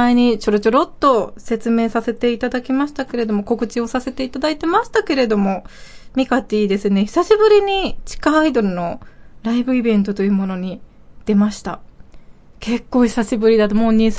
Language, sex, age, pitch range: Japanese, female, 20-39, 205-255 Hz